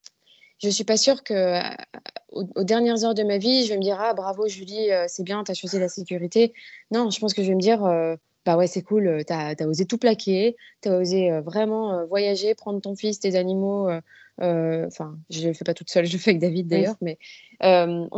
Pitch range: 175-215 Hz